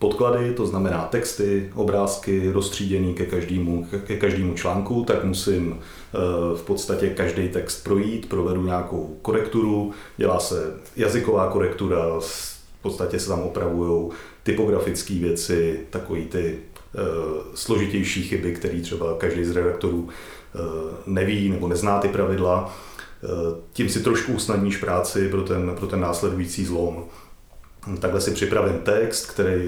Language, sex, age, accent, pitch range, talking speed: Czech, male, 30-49, native, 85-100 Hz, 125 wpm